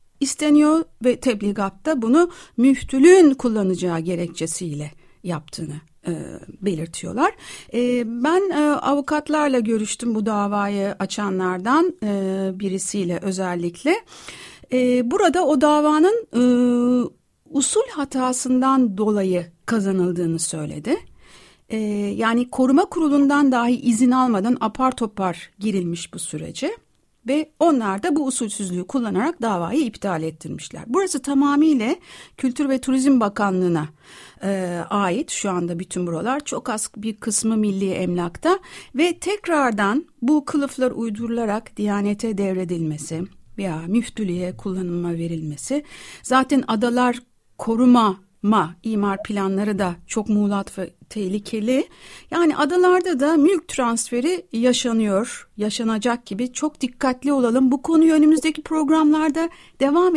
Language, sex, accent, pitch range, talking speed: Turkish, female, native, 200-295 Hz, 110 wpm